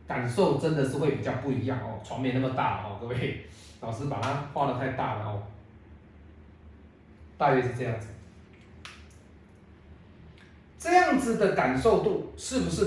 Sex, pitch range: male, 105-170 Hz